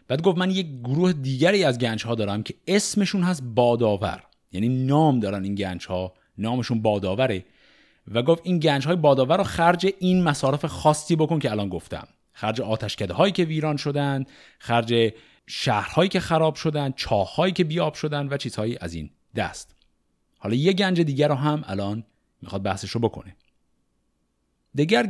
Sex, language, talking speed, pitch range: male, Persian, 165 wpm, 100-165 Hz